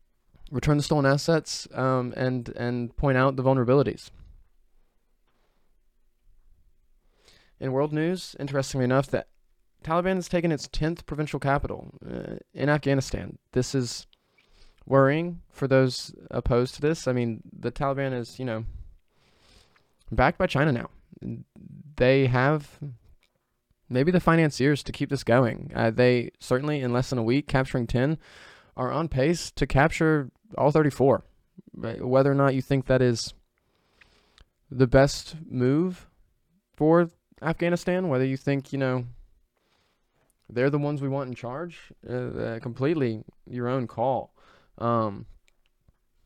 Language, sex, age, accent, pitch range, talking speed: English, male, 20-39, American, 120-145 Hz, 135 wpm